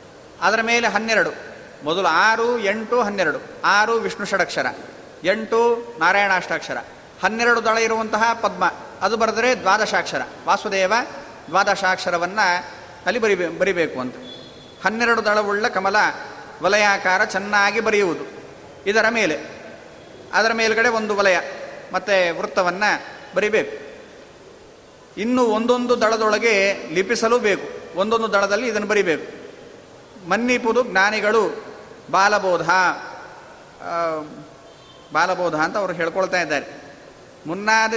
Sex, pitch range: male, 190-230 Hz